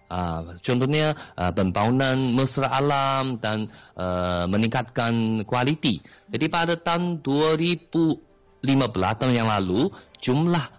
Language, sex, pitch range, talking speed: Malay, male, 110-150 Hz, 100 wpm